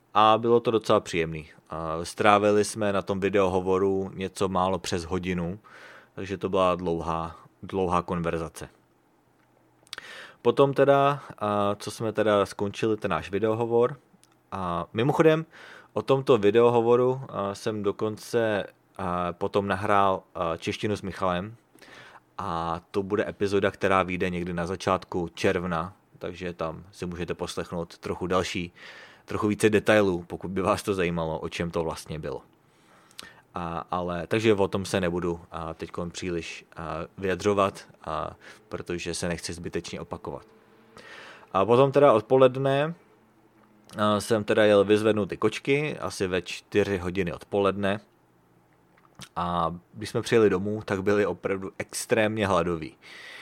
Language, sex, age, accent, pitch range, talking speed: English, male, 30-49, Czech, 90-110 Hz, 125 wpm